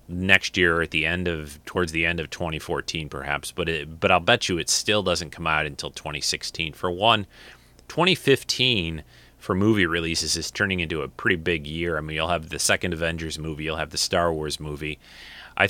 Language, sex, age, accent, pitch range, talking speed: English, male, 30-49, American, 80-95 Hz, 205 wpm